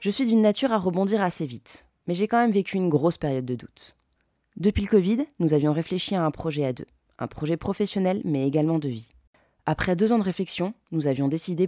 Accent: French